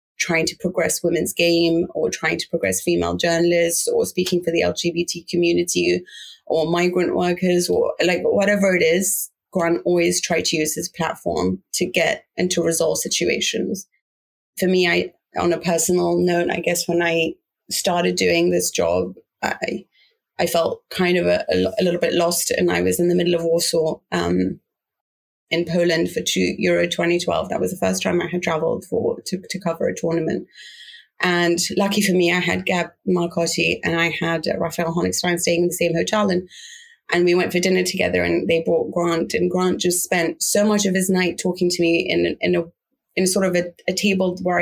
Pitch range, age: 165-180 Hz, 30-49